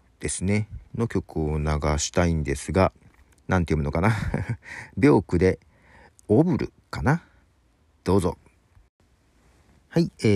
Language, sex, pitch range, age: Japanese, male, 75-105 Hz, 40-59